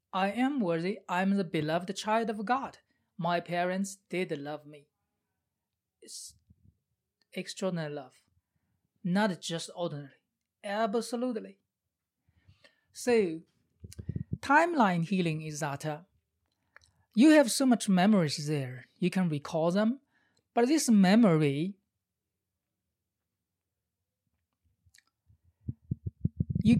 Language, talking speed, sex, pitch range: English, 95 wpm, male, 150-205 Hz